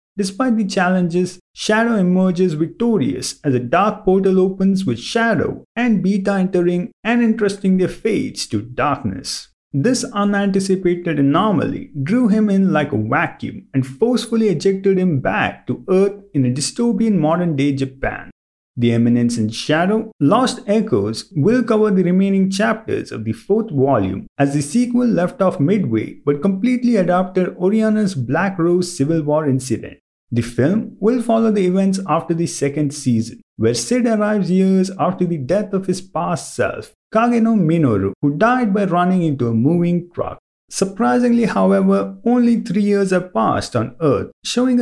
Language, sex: English, male